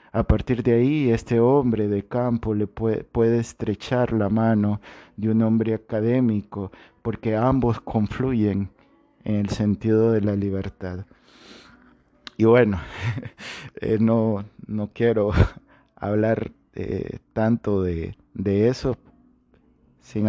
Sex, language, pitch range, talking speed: male, Spanish, 100-115 Hz, 115 wpm